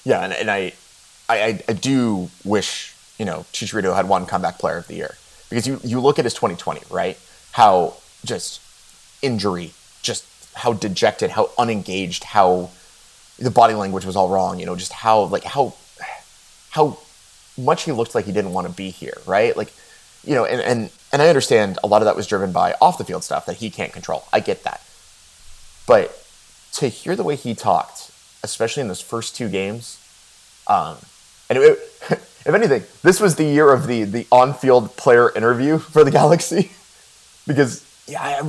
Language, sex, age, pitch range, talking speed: English, male, 20-39, 110-145 Hz, 185 wpm